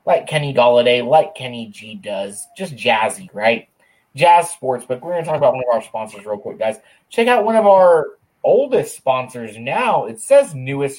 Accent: American